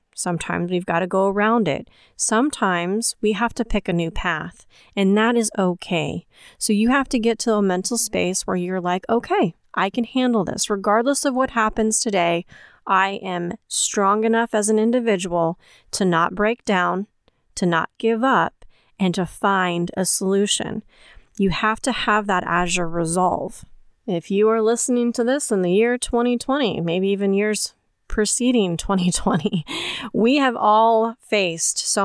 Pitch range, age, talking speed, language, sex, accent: 185-225 Hz, 30-49, 165 wpm, English, female, American